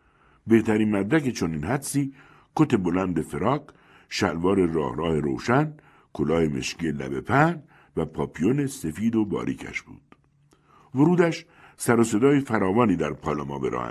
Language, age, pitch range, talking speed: Persian, 60-79, 90-140 Hz, 130 wpm